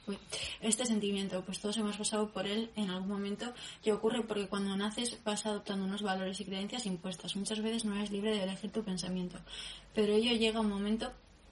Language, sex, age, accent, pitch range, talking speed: Spanish, female, 20-39, Spanish, 200-220 Hz, 200 wpm